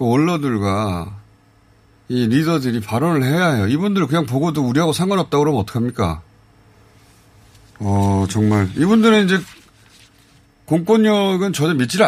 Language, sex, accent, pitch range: Korean, male, native, 100-135 Hz